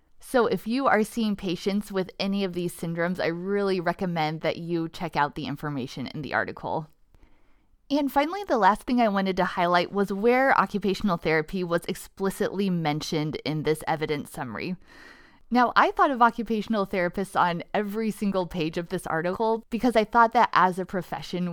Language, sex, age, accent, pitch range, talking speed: English, female, 20-39, American, 170-220 Hz, 175 wpm